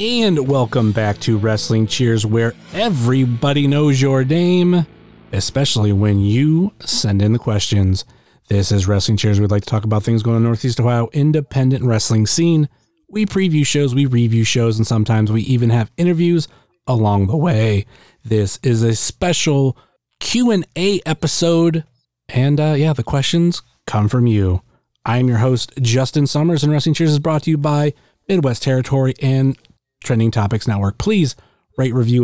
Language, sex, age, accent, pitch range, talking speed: English, male, 30-49, American, 110-150 Hz, 160 wpm